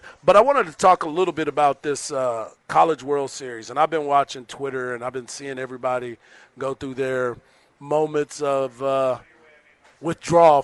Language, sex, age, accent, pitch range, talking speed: English, male, 40-59, American, 135-165 Hz, 175 wpm